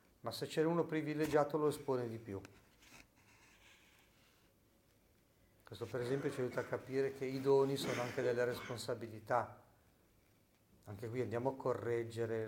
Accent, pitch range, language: native, 100-125 Hz, Italian